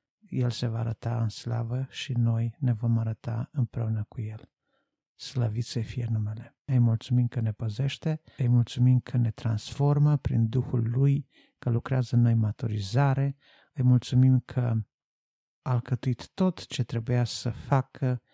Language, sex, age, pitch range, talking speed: Romanian, male, 50-69, 115-135 Hz, 145 wpm